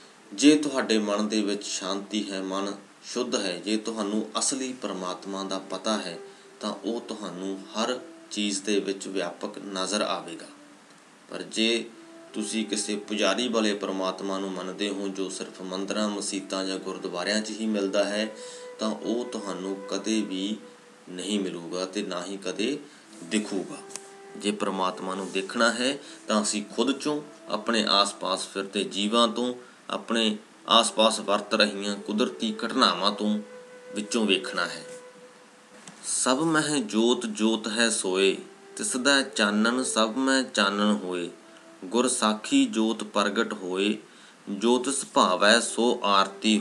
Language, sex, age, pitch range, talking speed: Punjabi, male, 30-49, 100-125 Hz, 125 wpm